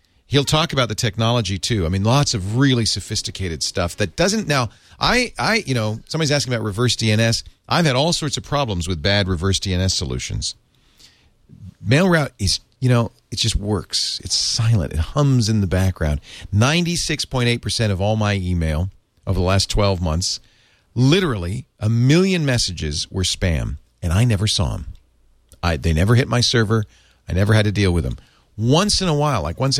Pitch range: 95-125 Hz